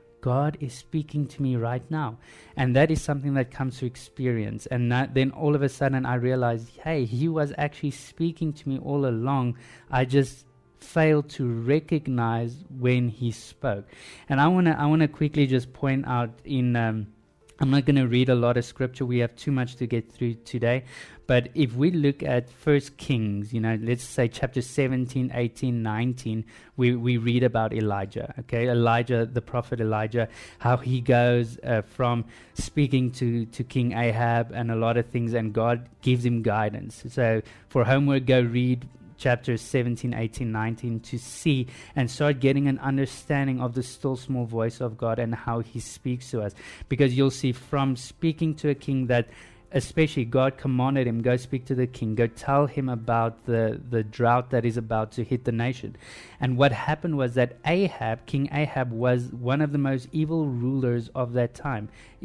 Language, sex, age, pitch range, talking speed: English, male, 20-39, 115-135 Hz, 185 wpm